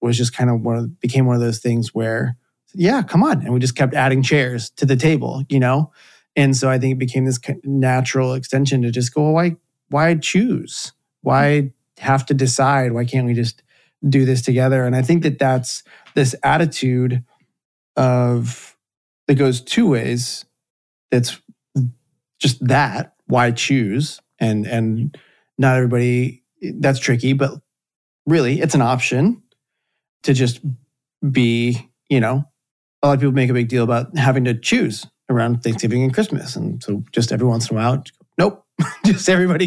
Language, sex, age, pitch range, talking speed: English, male, 30-49, 125-145 Hz, 170 wpm